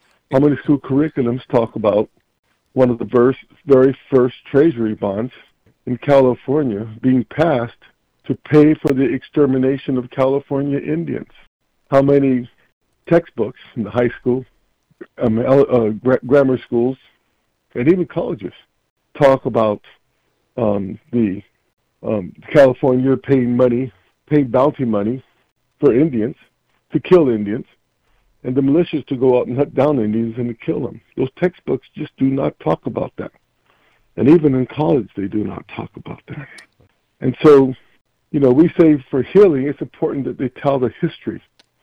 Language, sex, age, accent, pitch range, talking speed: English, male, 50-69, American, 120-150 Hz, 145 wpm